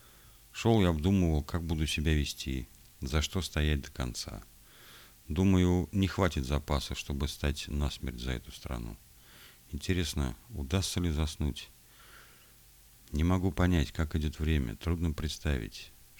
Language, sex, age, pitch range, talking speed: Russian, male, 50-69, 65-85 Hz, 125 wpm